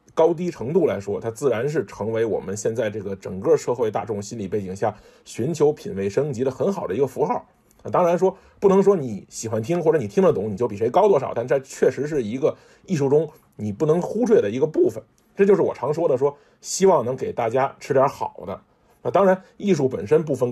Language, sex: Chinese, male